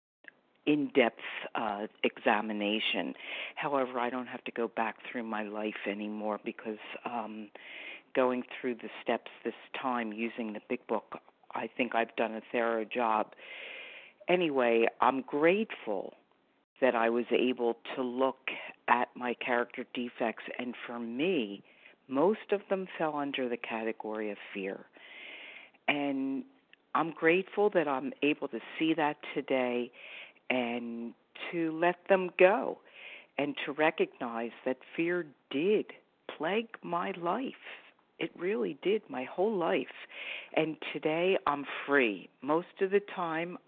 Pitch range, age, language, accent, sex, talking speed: 115-160 Hz, 50-69, English, American, female, 130 wpm